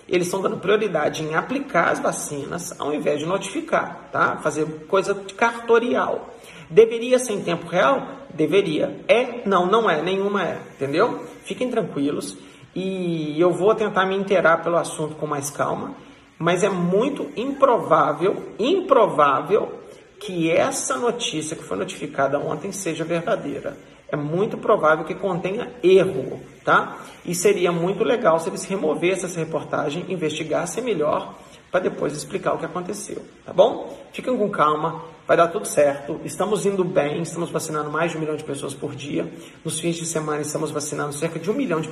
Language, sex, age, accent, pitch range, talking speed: Portuguese, male, 40-59, Brazilian, 155-200 Hz, 160 wpm